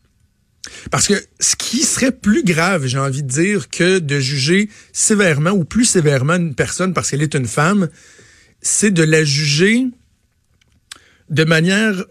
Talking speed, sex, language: 155 wpm, male, French